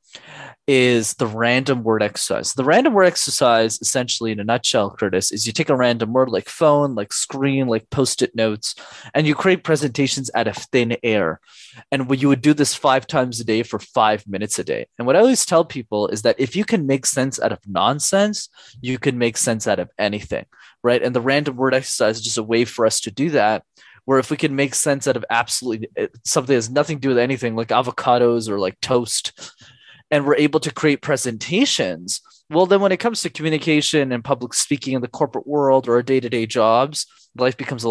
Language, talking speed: English, 215 wpm